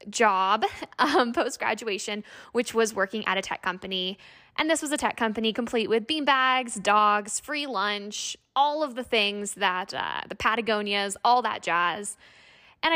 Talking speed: 160 wpm